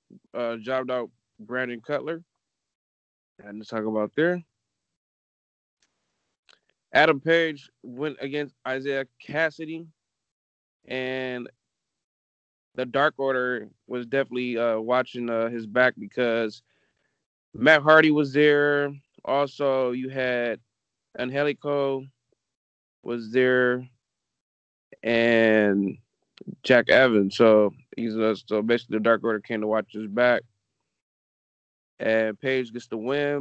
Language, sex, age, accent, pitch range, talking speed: English, male, 20-39, American, 110-140 Hz, 105 wpm